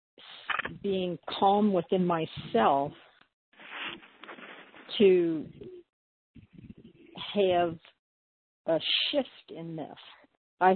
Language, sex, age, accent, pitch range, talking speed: English, female, 60-79, American, 160-195 Hz, 60 wpm